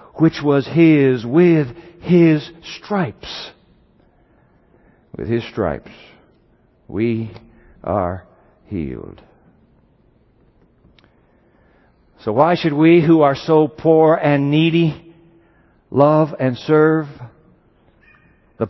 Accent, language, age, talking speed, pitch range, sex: American, English, 60-79, 85 wpm, 130-180 Hz, male